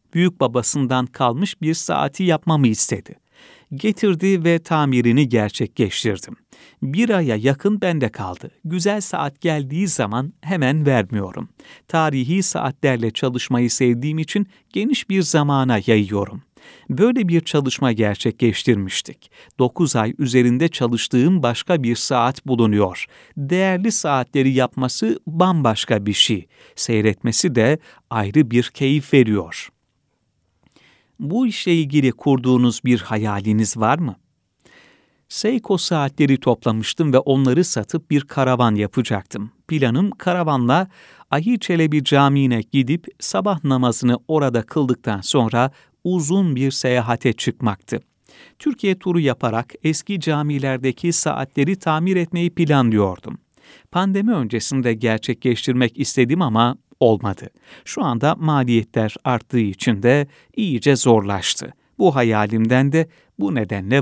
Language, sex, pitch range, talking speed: Turkish, male, 115-160 Hz, 110 wpm